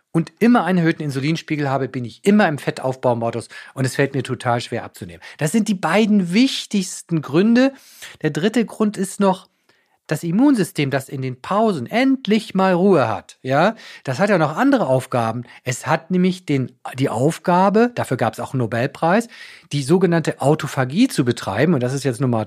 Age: 40-59